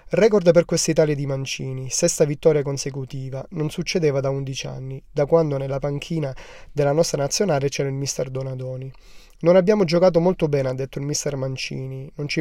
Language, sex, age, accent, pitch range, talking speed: Italian, male, 30-49, native, 135-170 Hz, 175 wpm